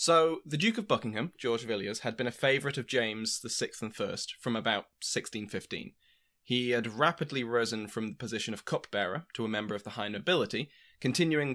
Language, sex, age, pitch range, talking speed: English, male, 20-39, 115-140 Hz, 185 wpm